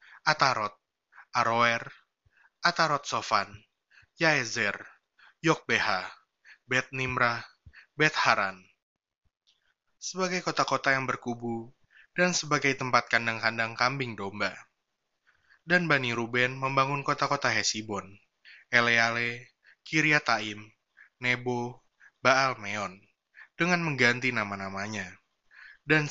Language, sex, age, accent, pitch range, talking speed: Indonesian, male, 20-39, native, 115-140 Hz, 75 wpm